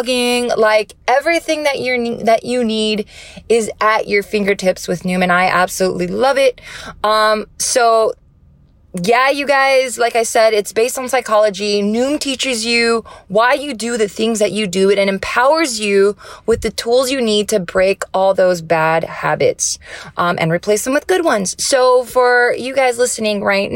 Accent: American